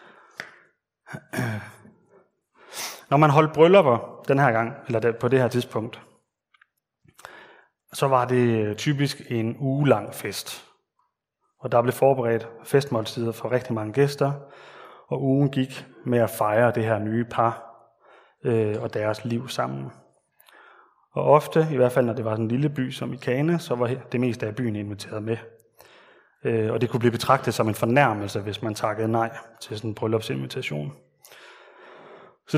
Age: 30-49